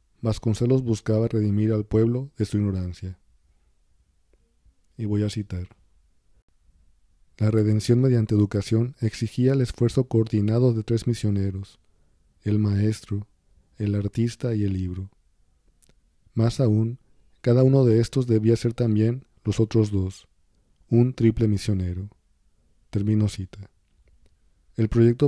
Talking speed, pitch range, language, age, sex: 115 wpm, 95-115 Hz, Spanish, 40-59, male